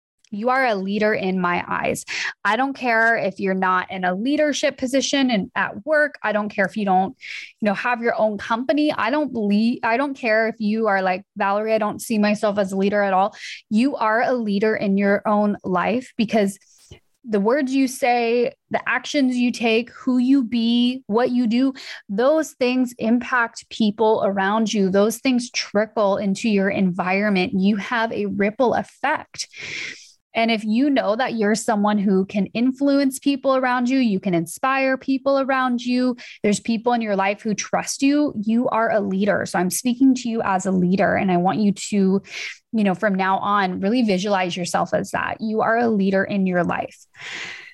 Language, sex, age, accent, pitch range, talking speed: English, female, 20-39, American, 200-255 Hz, 190 wpm